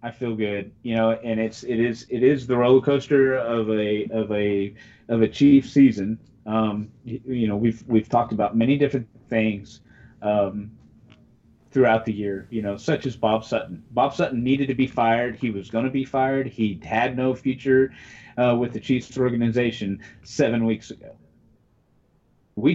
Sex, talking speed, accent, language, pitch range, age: male, 175 wpm, American, English, 110-140 Hz, 30-49